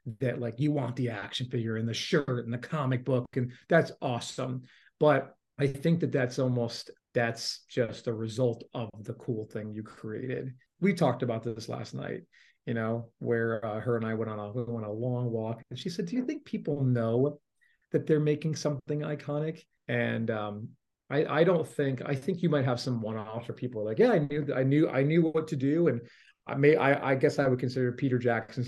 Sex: male